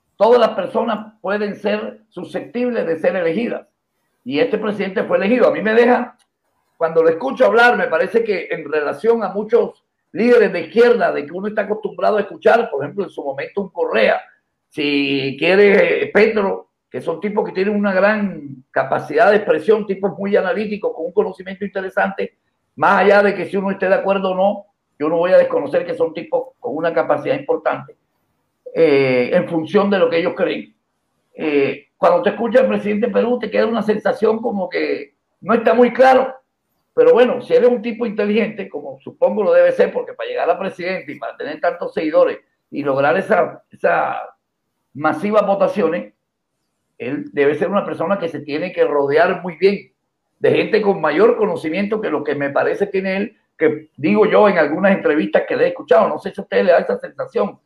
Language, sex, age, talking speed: Spanish, male, 50-69, 195 wpm